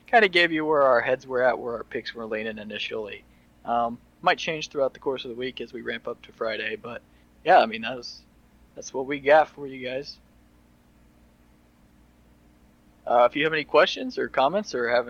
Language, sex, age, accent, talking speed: English, male, 20-39, American, 210 wpm